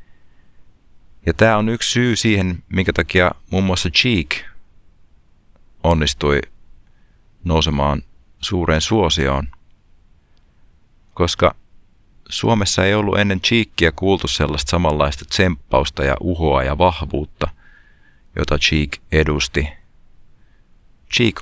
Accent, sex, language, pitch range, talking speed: native, male, Finnish, 75-95 Hz, 90 wpm